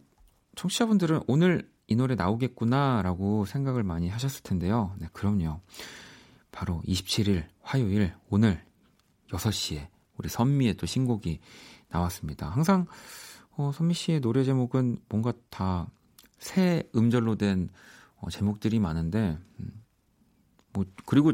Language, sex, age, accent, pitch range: Korean, male, 40-59, native, 95-130 Hz